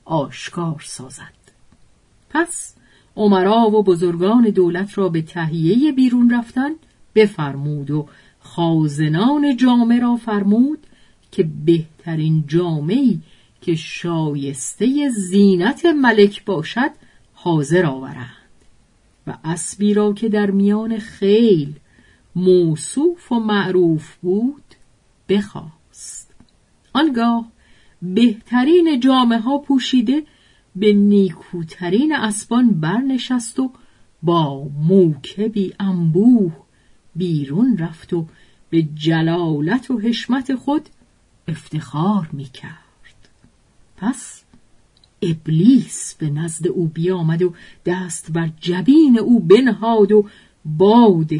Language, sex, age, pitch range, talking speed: Persian, female, 50-69, 165-235 Hz, 90 wpm